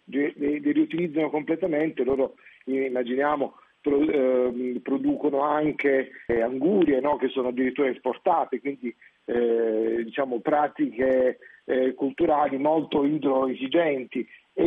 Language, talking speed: Italian, 100 wpm